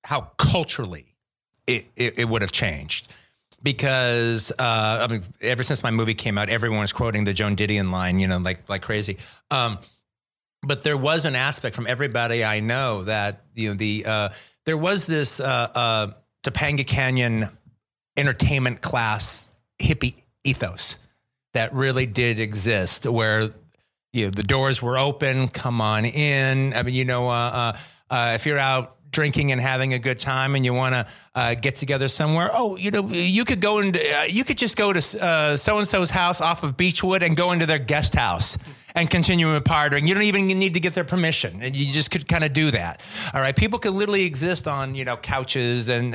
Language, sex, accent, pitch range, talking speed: English, male, American, 115-150 Hz, 195 wpm